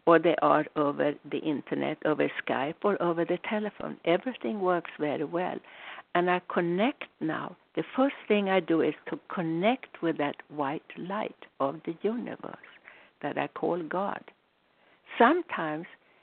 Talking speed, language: 150 wpm, English